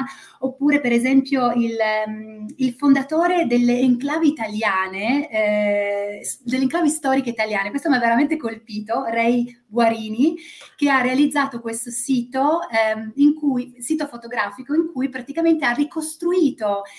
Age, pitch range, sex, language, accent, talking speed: 30-49, 220-270 Hz, female, Italian, native, 125 wpm